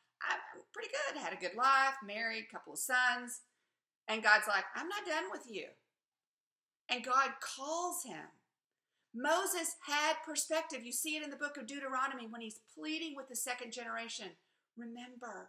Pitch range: 220-300 Hz